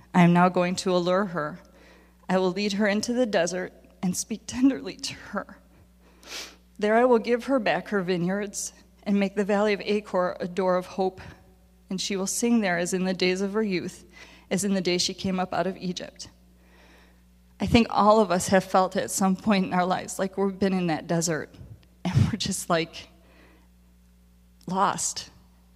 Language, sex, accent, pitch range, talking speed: English, female, American, 160-195 Hz, 195 wpm